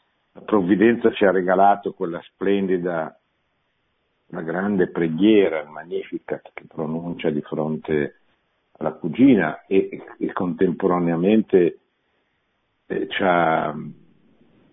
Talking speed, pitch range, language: 95 wpm, 85-110 Hz, Italian